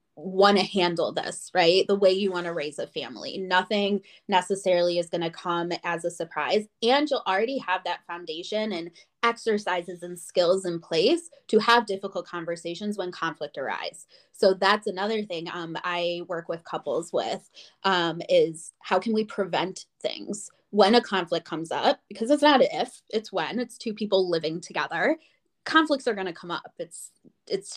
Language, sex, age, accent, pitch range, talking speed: English, female, 20-39, American, 175-220 Hz, 180 wpm